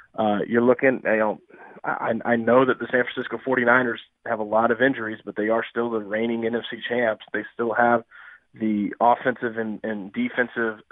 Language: English